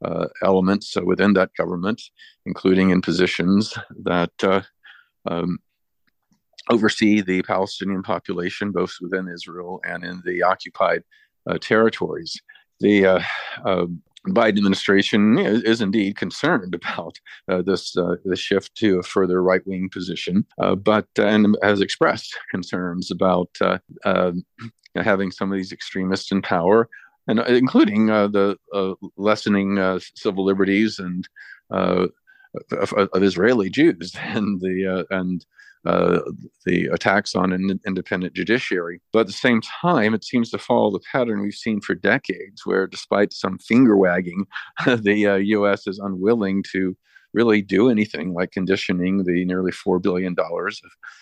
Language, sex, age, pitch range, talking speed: English, male, 50-69, 95-105 Hz, 145 wpm